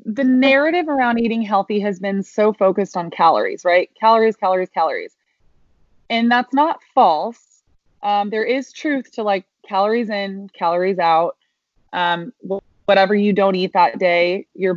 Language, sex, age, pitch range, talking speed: English, female, 20-39, 180-220 Hz, 150 wpm